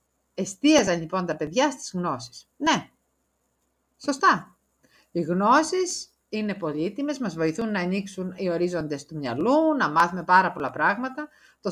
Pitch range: 165-240 Hz